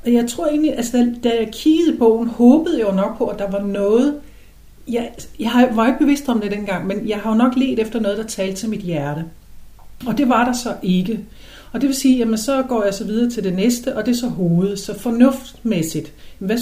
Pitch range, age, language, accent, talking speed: 195-250 Hz, 60-79, English, Danish, 240 wpm